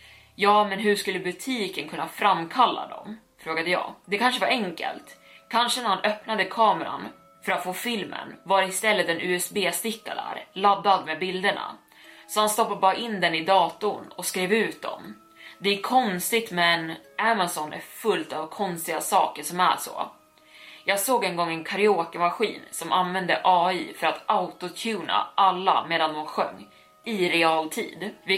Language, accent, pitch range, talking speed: Swedish, native, 170-210 Hz, 155 wpm